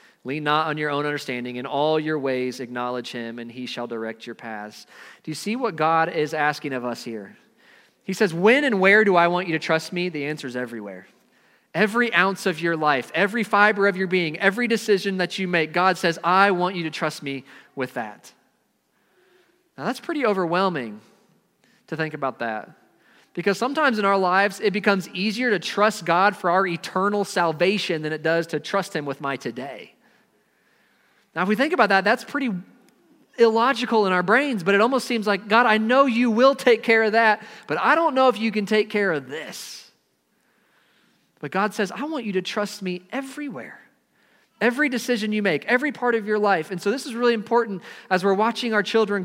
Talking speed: 205 wpm